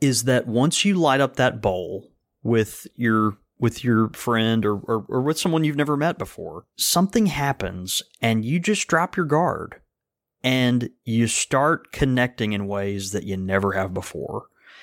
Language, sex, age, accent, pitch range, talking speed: English, male, 30-49, American, 110-160 Hz, 165 wpm